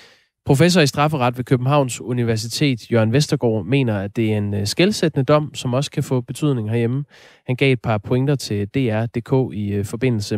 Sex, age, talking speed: male, 20-39, 175 wpm